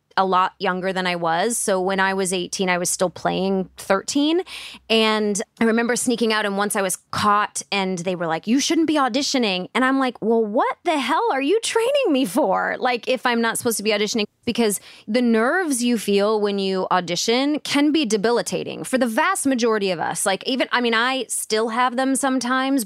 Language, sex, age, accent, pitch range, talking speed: English, female, 20-39, American, 195-250 Hz, 210 wpm